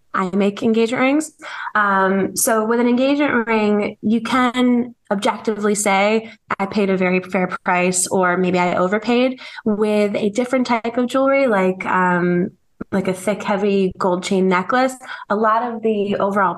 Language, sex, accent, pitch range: English, female, American, 180-215 Hz